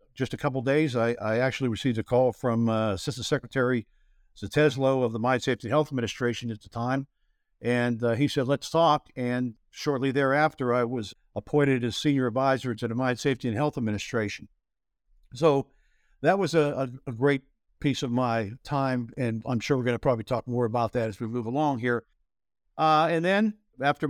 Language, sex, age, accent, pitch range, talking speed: English, male, 60-79, American, 120-145 Hz, 190 wpm